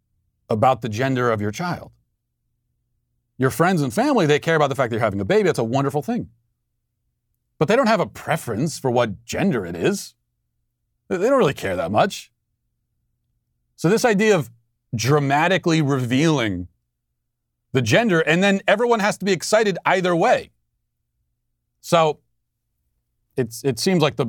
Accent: American